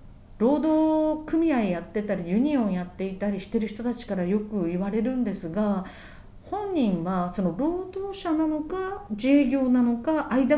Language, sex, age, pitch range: Japanese, female, 50-69, 200-275 Hz